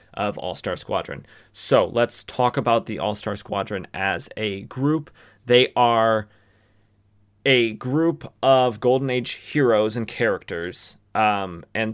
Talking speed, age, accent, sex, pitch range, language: 125 wpm, 20-39, American, male, 105-120 Hz, English